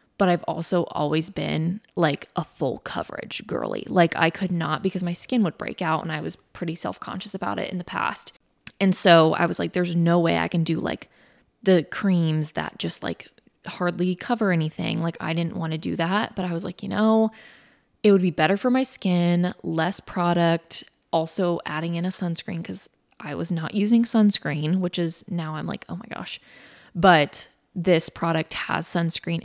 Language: English